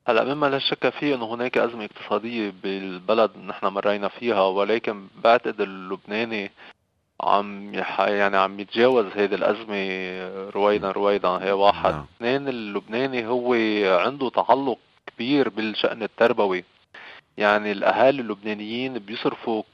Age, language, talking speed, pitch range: 20-39, Arabic, 120 wpm, 100-125 Hz